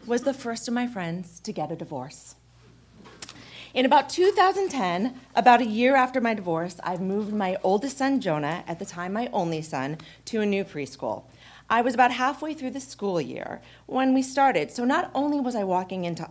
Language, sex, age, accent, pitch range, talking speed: English, female, 40-59, American, 150-235 Hz, 195 wpm